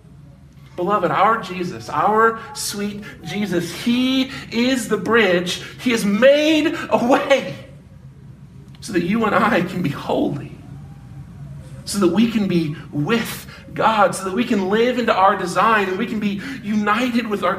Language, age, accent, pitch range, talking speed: English, 40-59, American, 195-260 Hz, 155 wpm